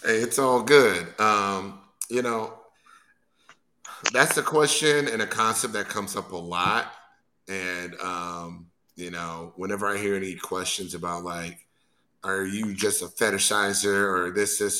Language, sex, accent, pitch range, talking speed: English, male, American, 90-130 Hz, 150 wpm